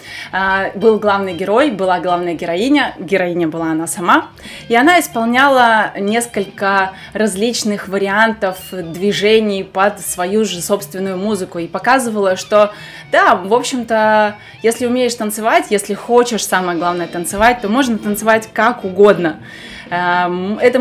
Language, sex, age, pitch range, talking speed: Russian, female, 20-39, 190-240 Hz, 120 wpm